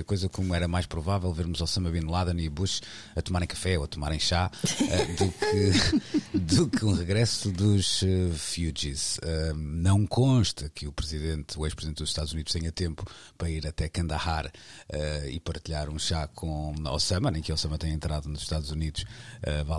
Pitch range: 80-105 Hz